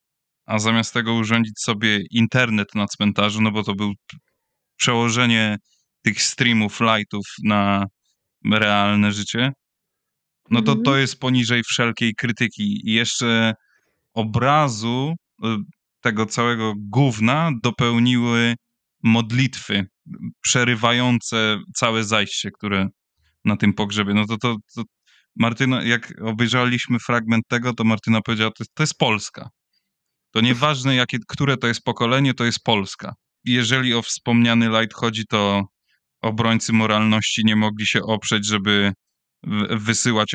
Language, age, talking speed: Polish, 20-39, 120 wpm